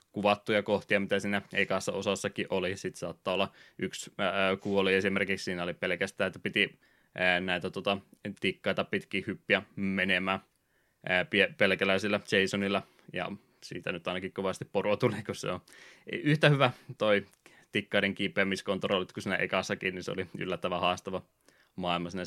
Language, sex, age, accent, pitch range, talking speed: Finnish, male, 20-39, native, 95-105 Hz, 150 wpm